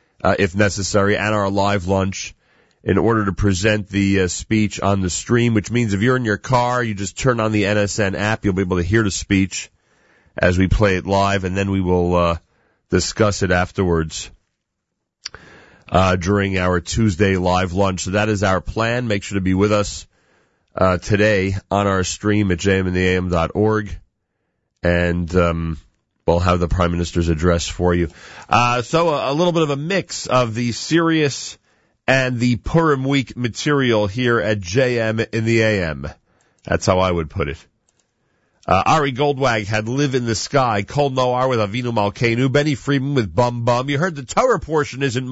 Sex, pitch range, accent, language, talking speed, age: male, 90-115 Hz, American, English, 185 wpm, 40-59